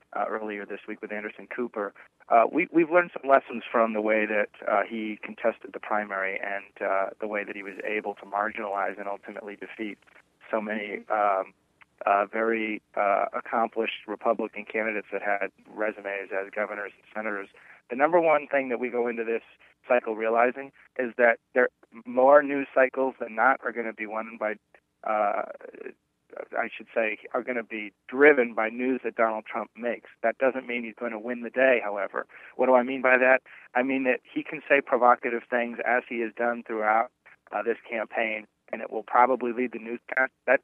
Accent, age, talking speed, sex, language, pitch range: American, 30-49, 195 wpm, male, English, 105-125 Hz